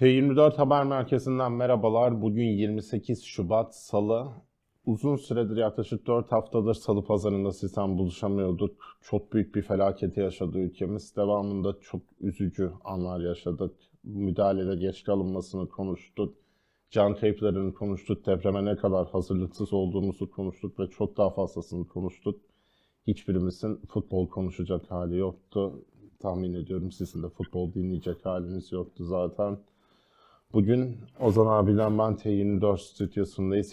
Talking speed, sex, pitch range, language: 115 wpm, male, 95-120 Hz, Turkish